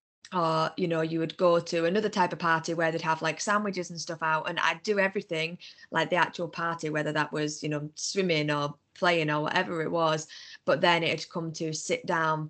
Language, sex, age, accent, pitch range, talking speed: English, female, 20-39, British, 150-170 Hz, 225 wpm